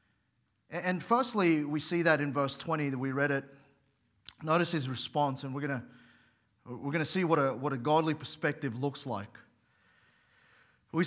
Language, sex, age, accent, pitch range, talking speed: English, male, 30-49, Australian, 120-155 Hz, 165 wpm